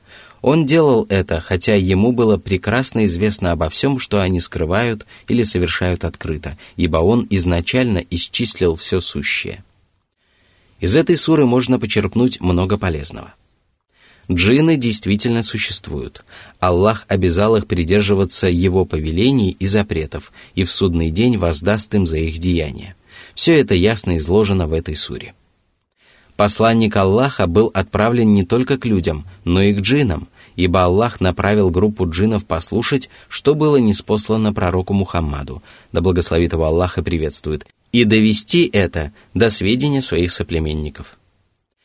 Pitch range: 90-110 Hz